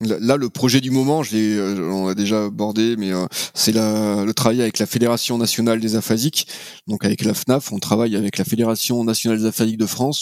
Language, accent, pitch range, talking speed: French, French, 105-125 Hz, 225 wpm